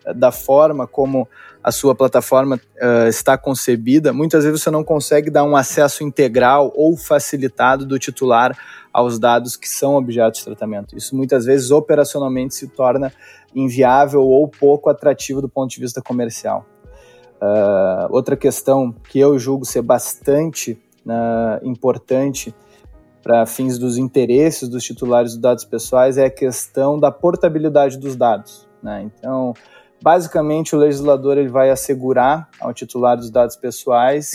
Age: 20-39